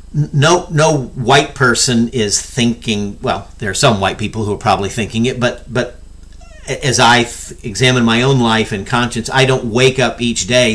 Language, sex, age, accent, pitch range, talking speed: English, male, 50-69, American, 100-130 Hz, 185 wpm